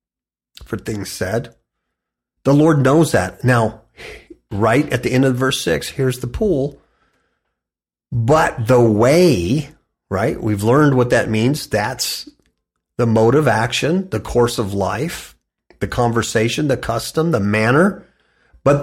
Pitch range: 100-145 Hz